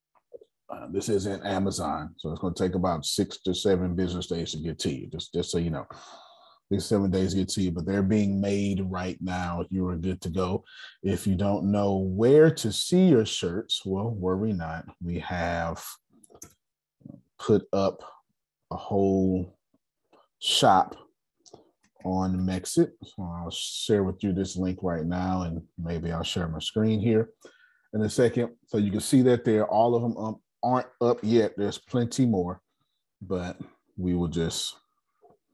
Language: English